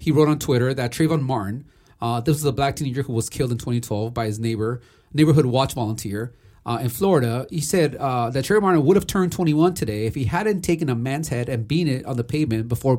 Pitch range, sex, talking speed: 115-155 Hz, male, 240 wpm